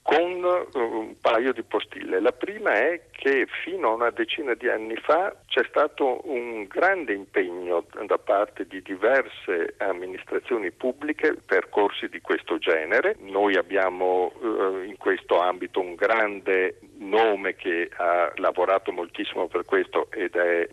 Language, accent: Italian, native